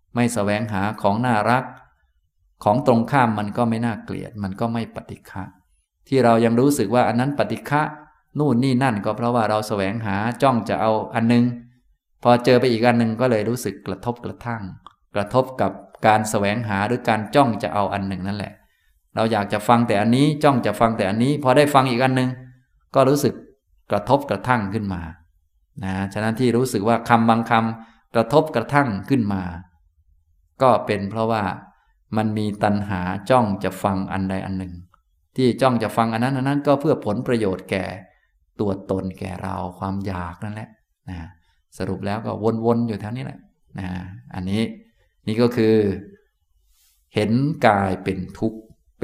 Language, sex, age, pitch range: Thai, male, 20-39, 95-120 Hz